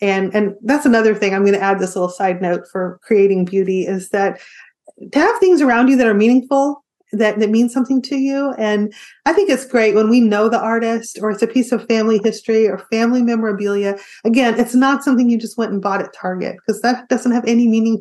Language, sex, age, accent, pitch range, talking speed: English, female, 30-49, American, 205-270 Hz, 230 wpm